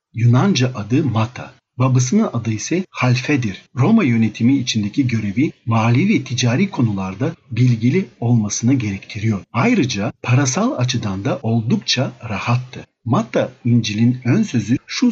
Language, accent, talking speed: Turkish, native, 115 wpm